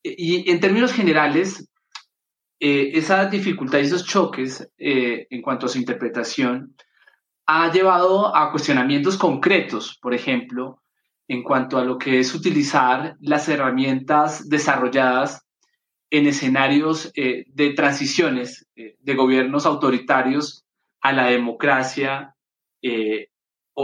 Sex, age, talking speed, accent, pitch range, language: male, 30-49, 115 wpm, Colombian, 130-165 Hz, Spanish